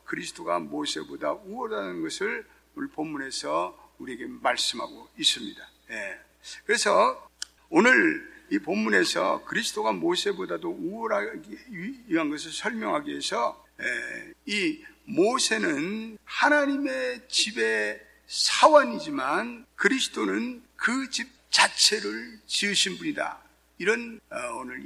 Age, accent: 60-79, native